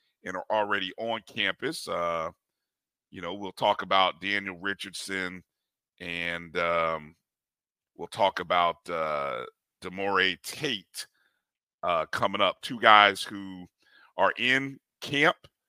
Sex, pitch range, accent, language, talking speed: male, 95-135 Hz, American, English, 115 wpm